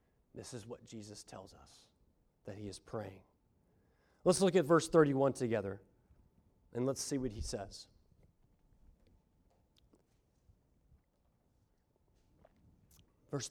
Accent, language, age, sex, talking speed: American, English, 40-59, male, 100 wpm